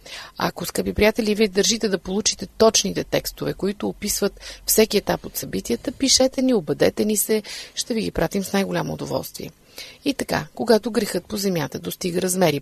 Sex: female